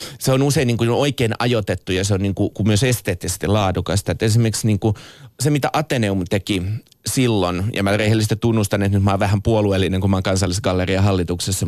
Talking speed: 185 wpm